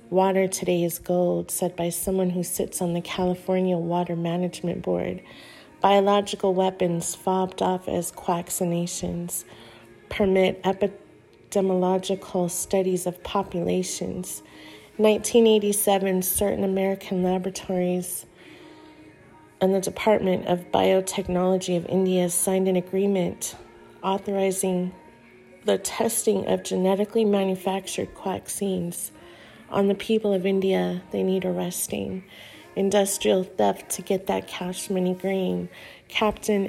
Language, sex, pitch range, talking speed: English, female, 180-200 Hz, 105 wpm